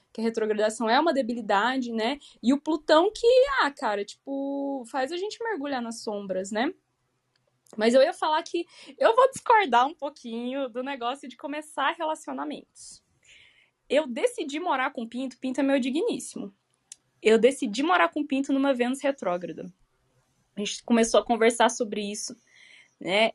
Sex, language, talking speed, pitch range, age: female, Portuguese, 155 wpm, 215-280 Hz, 10-29